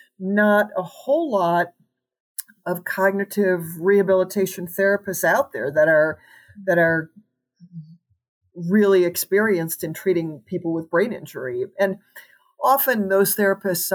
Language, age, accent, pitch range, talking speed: English, 50-69, American, 165-205 Hz, 110 wpm